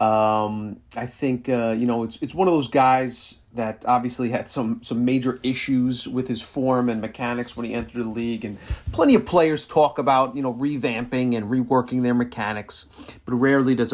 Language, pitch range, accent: English, 110-130 Hz, American